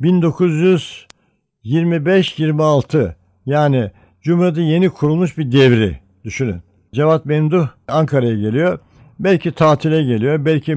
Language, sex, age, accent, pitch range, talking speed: Turkish, male, 60-79, native, 120-170 Hz, 90 wpm